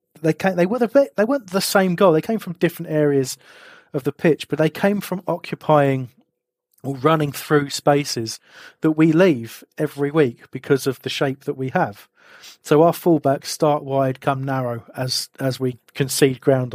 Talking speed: 185 wpm